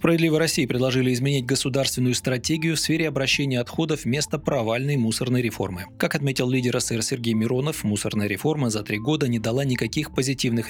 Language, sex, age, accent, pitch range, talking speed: Russian, male, 30-49, native, 110-135 Hz, 165 wpm